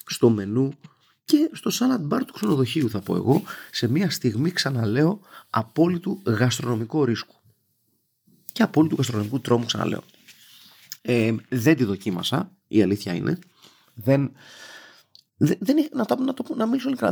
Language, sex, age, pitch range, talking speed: Greek, male, 30-49, 115-165 Hz, 110 wpm